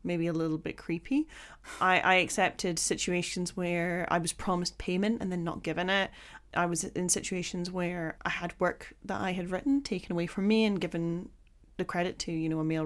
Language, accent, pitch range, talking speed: English, British, 170-195 Hz, 205 wpm